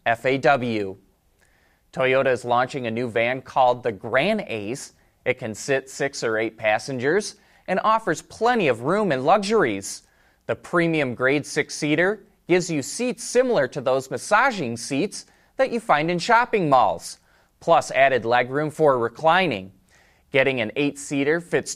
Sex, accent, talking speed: male, American, 145 wpm